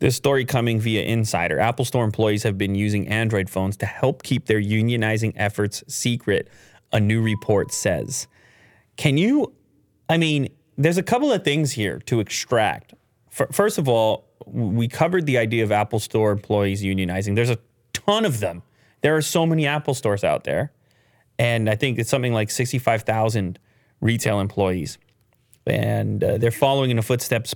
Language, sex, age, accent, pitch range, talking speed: English, male, 30-49, American, 105-130 Hz, 165 wpm